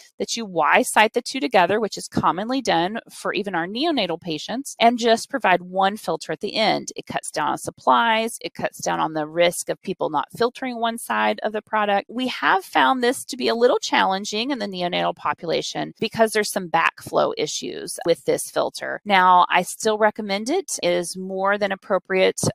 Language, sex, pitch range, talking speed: English, female, 180-230 Hz, 200 wpm